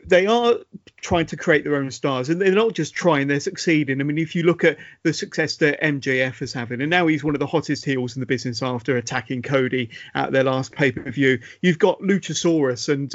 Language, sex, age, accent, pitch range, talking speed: English, male, 30-49, British, 140-180 Hz, 235 wpm